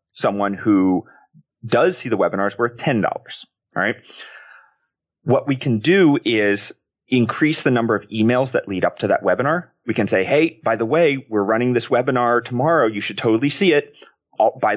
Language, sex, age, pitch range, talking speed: English, male, 30-49, 115-145 Hz, 185 wpm